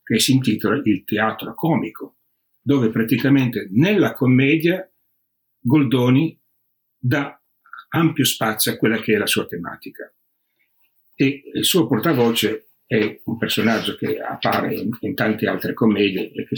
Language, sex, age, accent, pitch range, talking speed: Italian, male, 60-79, native, 110-140 Hz, 125 wpm